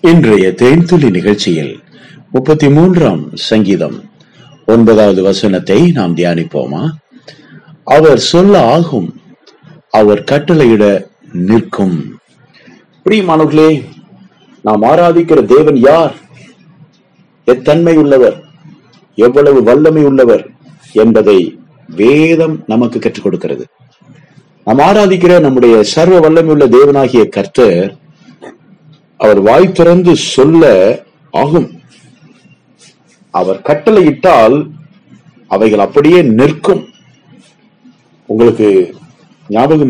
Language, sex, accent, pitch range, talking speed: Tamil, male, native, 115-175 Hz, 75 wpm